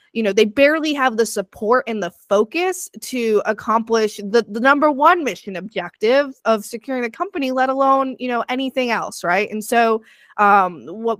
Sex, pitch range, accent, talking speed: female, 210-270 Hz, American, 175 wpm